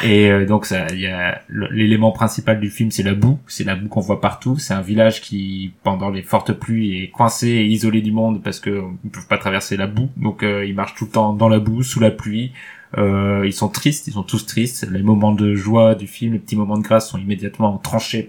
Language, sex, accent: French, male, French